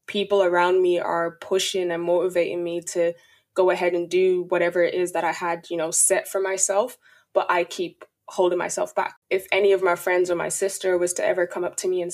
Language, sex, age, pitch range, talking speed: English, female, 20-39, 175-195 Hz, 225 wpm